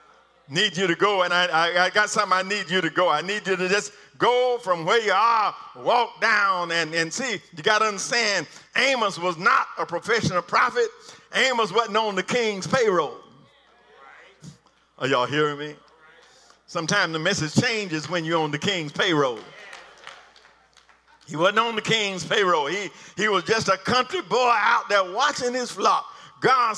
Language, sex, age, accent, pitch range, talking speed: English, male, 50-69, American, 165-225 Hz, 175 wpm